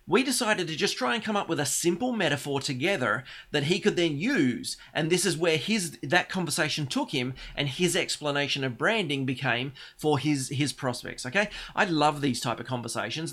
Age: 30-49